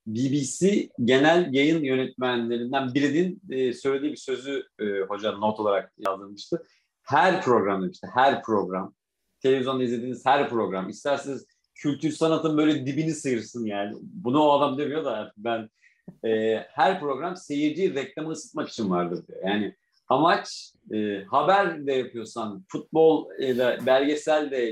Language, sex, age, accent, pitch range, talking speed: Turkish, male, 50-69, native, 125-190 Hz, 130 wpm